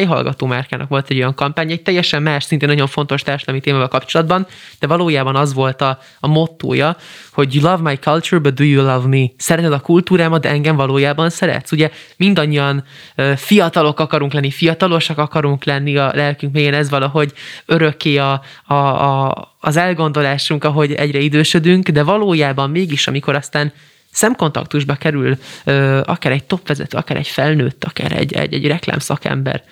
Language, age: Hungarian, 20-39